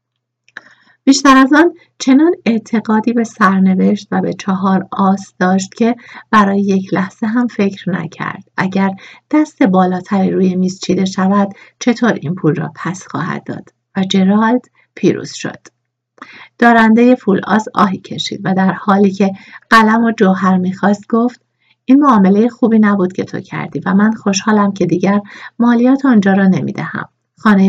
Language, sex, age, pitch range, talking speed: Persian, female, 50-69, 180-230 Hz, 145 wpm